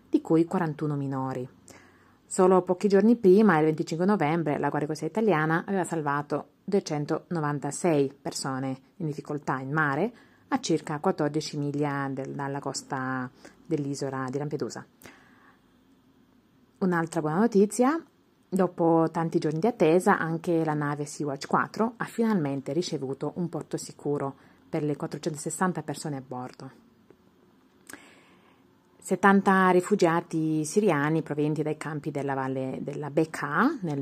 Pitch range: 145-180 Hz